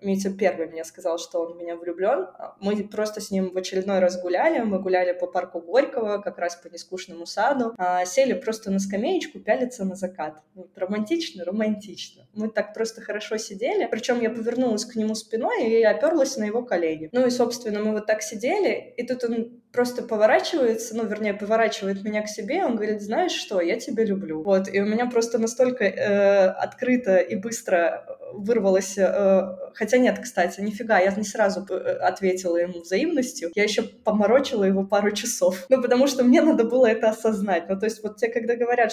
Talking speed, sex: 190 wpm, female